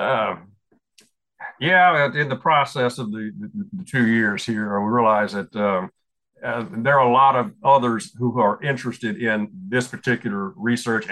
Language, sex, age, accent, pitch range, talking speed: English, male, 50-69, American, 105-135 Hz, 160 wpm